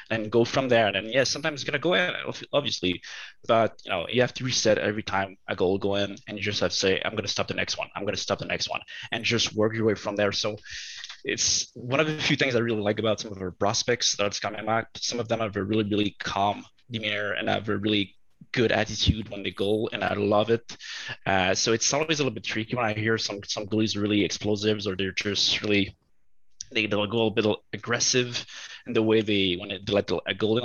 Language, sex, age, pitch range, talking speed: English, male, 20-39, 105-130 Hz, 255 wpm